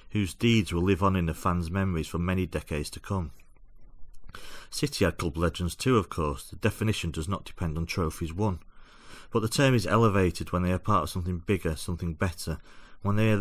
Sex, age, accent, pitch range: male, 40-59, British, 80-100 Hz